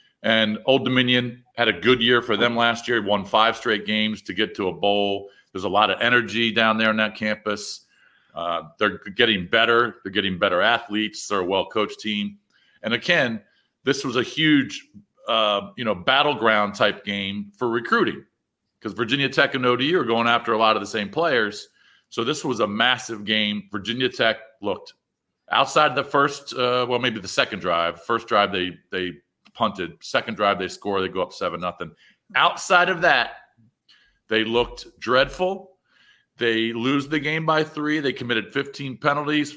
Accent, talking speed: American, 180 wpm